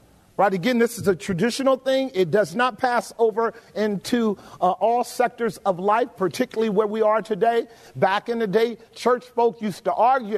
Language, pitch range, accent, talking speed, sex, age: English, 190-250 Hz, American, 185 wpm, male, 50-69